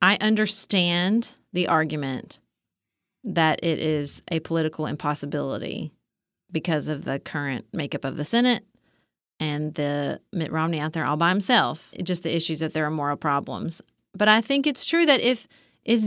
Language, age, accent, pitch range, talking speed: English, 30-49, American, 160-215 Hz, 165 wpm